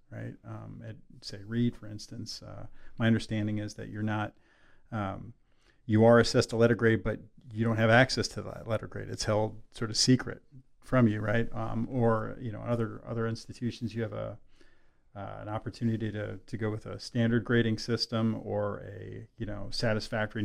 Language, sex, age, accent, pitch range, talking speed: English, male, 40-59, American, 105-120 Hz, 190 wpm